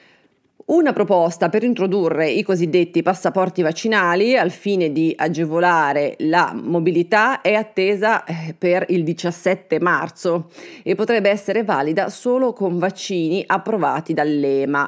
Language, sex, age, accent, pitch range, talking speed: Italian, female, 30-49, native, 150-195 Hz, 115 wpm